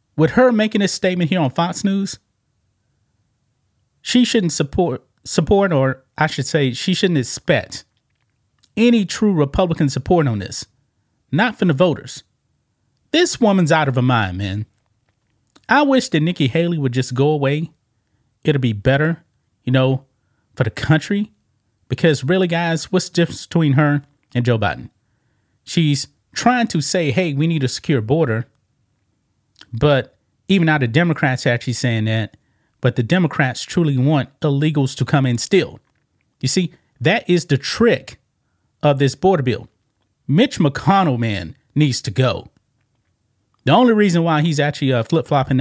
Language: English